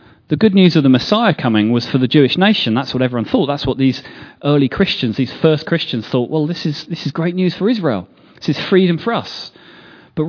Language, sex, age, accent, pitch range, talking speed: English, male, 30-49, British, 120-155 Hz, 235 wpm